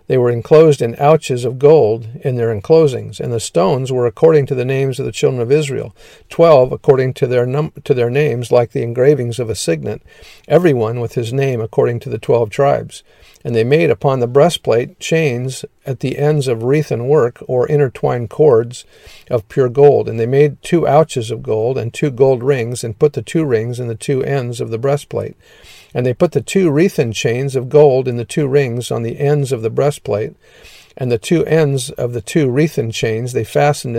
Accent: American